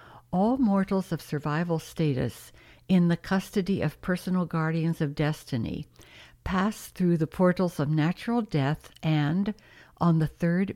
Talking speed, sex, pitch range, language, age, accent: 135 wpm, female, 150-180 Hz, English, 60-79, American